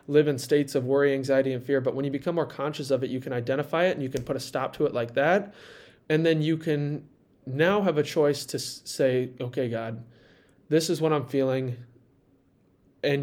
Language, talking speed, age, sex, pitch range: English, 220 wpm, 20-39, male, 125-150 Hz